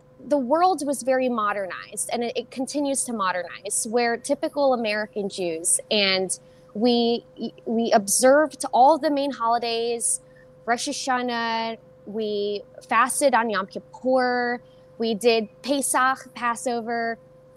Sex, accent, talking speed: female, American, 115 wpm